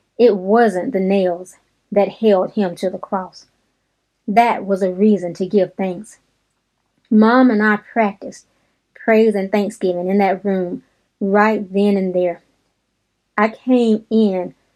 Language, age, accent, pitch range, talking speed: English, 30-49, American, 185-230 Hz, 140 wpm